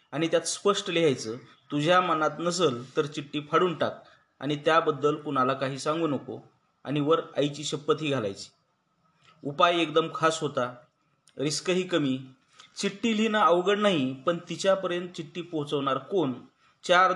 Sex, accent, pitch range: male, native, 140-175 Hz